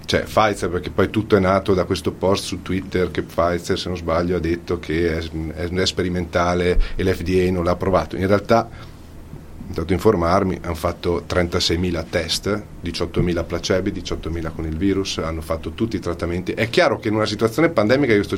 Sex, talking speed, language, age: male, 185 wpm, Italian, 40-59